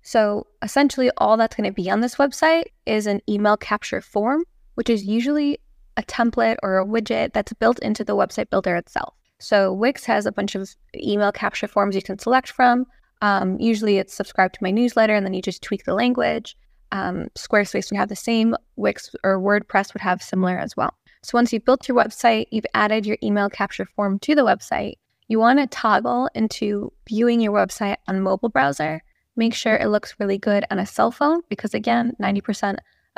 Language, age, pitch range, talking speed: English, 20-39, 195-235 Hz, 200 wpm